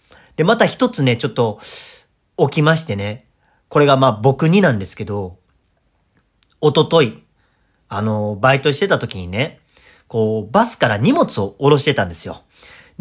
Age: 40-59